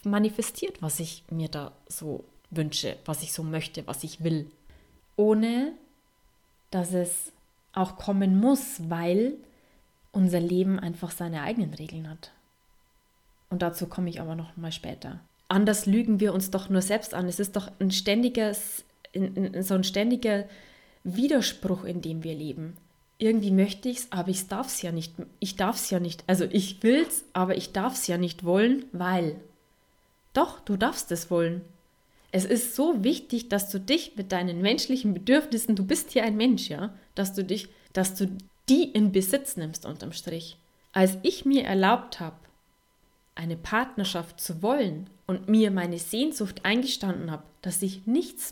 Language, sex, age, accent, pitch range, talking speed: German, female, 20-39, German, 175-225 Hz, 165 wpm